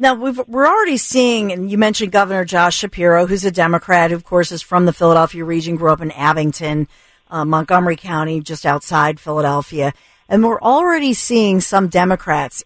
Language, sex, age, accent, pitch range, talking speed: English, female, 50-69, American, 160-190 Hz, 180 wpm